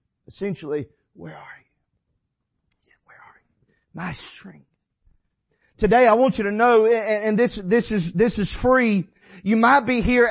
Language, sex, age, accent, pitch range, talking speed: English, male, 40-59, American, 175-260 Hz, 165 wpm